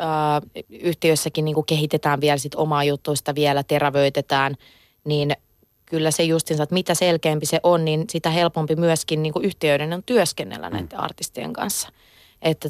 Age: 20-39